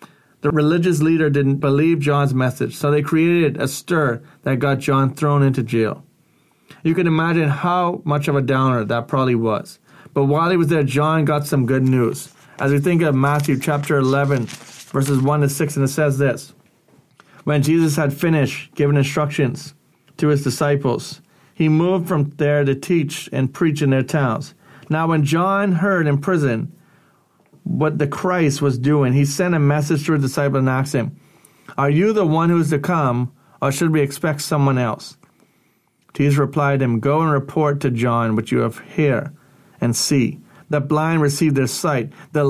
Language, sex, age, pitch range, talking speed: English, male, 30-49, 140-160 Hz, 185 wpm